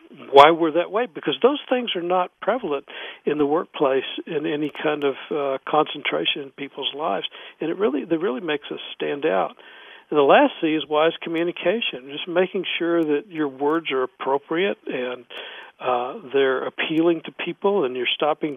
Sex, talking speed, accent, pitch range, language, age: male, 180 wpm, American, 135-170 Hz, English, 60-79